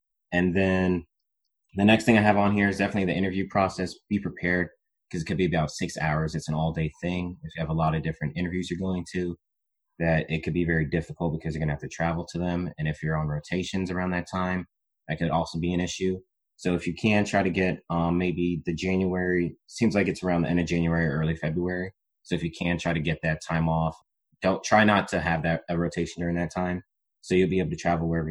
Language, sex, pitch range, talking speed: English, male, 80-95 Hz, 250 wpm